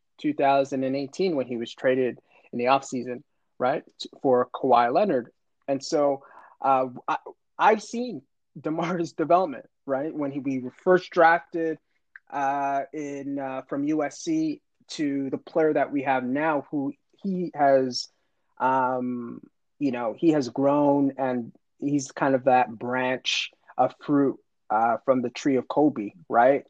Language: English